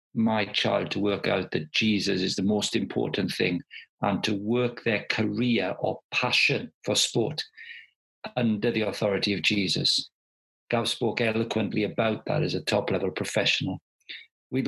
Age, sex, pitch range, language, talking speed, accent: 50-69, male, 100-125 Hz, English, 150 wpm, British